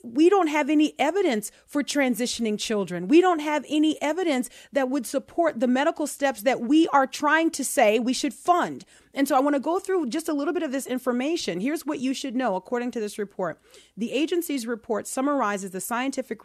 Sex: female